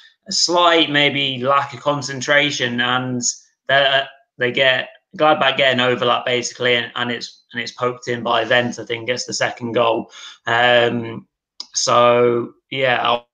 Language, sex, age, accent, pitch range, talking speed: English, male, 20-39, British, 115-130 Hz, 145 wpm